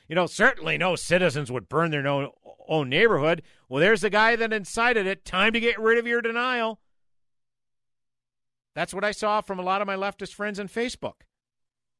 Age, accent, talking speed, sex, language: 50-69, American, 185 wpm, male, English